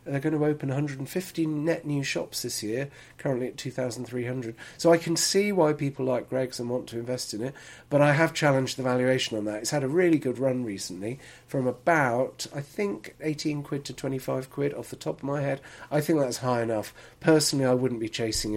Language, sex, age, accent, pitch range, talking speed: English, male, 40-59, British, 120-155 Hz, 215 wpm